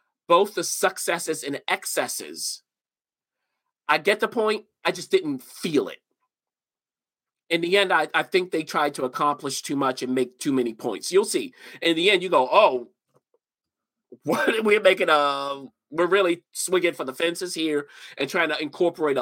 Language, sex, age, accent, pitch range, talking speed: English, male, 40-59, American, 130-190 Hz, 165 wpm